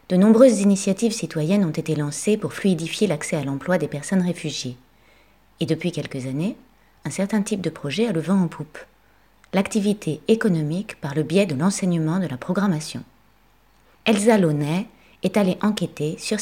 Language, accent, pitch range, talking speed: French, French, 155-205 Hz, 165 wpm